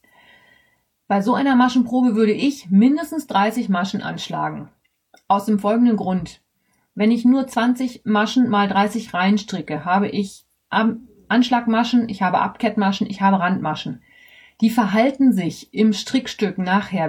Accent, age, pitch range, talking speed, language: German, 30-49, 190-240 Hz, 135 wpm, German